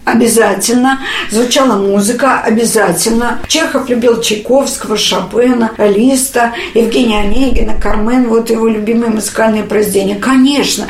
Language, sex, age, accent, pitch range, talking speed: Russian, female, 50-69, native, 225-280 Hz, 100 wpm